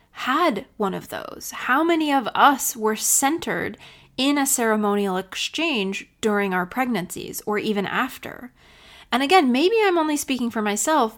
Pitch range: 200-250 Hz